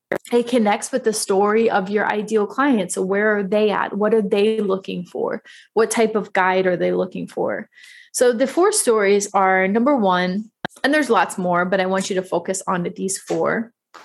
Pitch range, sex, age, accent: 185-215 Hz, female, 20-39, American